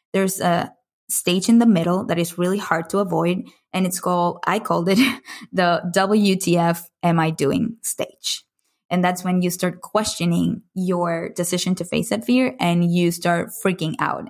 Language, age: English, 20-39